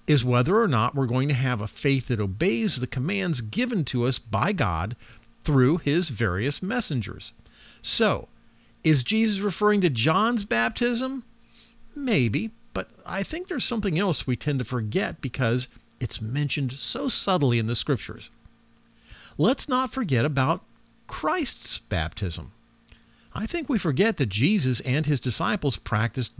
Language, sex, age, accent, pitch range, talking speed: English, male, 50-69, American, 115-190 Hz, 150 wpm